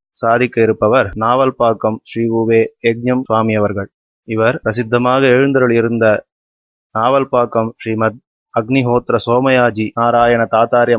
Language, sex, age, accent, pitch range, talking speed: Tamil, male, 30-49, native, 115-125 Hz, 100 wpm